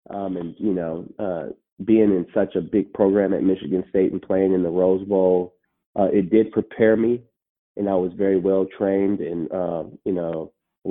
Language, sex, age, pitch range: English, male, 30-49, 90-100 Hz